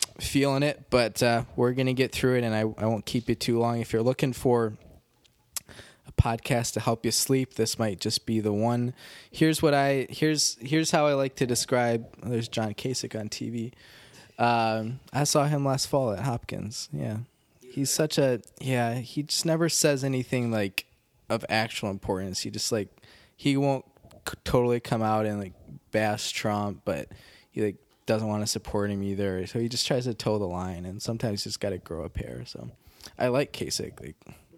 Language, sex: English, male